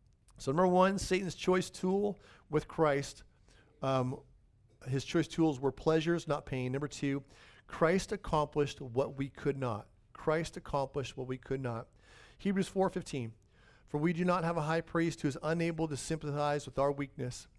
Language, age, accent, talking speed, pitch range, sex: English, 50-69, American, 165 wpm, 125-175 Hz, male